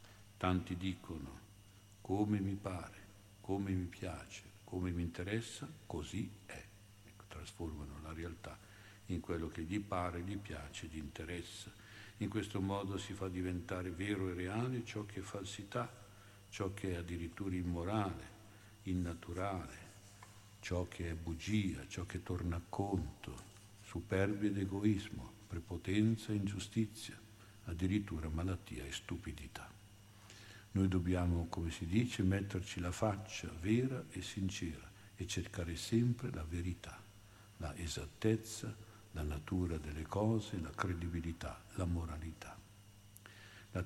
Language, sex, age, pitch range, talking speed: Italian, male, 60-79, 90-105 Hz, 125 wpm